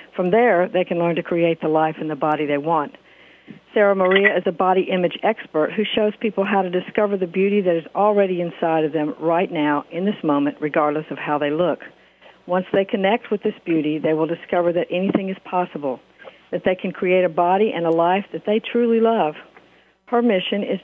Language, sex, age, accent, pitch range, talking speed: English, female, 60-79, American, 165-195 Hz, 215 wpm